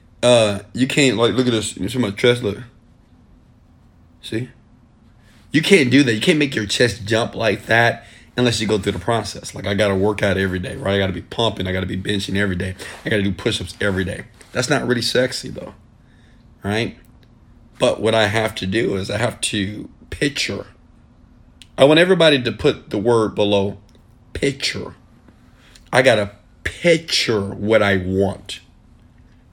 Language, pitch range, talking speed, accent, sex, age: English, 95-115 Hz, 185 wpm, American, male, 40-59